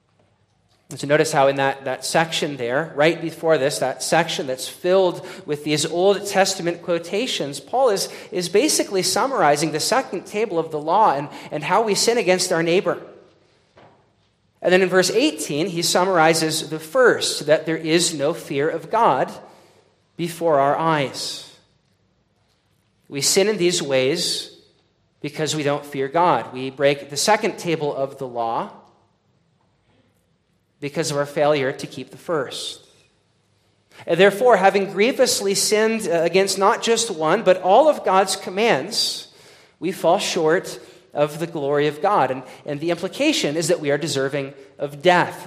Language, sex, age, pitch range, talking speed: English, male, 40-59, 140-185 Hz, 155 wpm